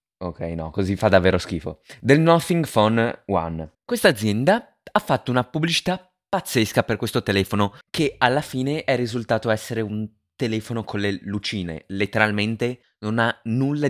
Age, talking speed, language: 20-39, 150 wpm, Italian